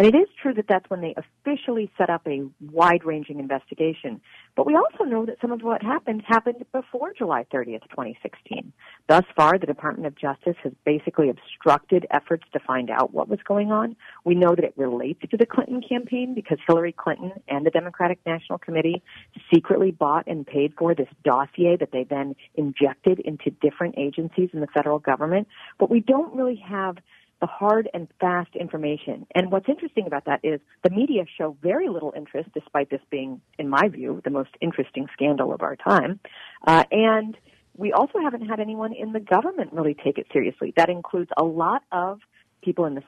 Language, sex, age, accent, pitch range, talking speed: English, female, 50-69, American, 150-205 Hz, 190 wpm